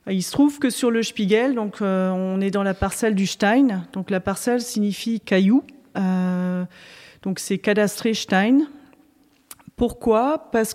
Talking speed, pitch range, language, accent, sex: 155 wpm, 185-220 Hz, French, French, female